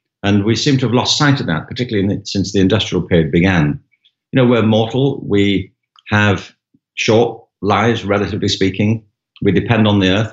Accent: British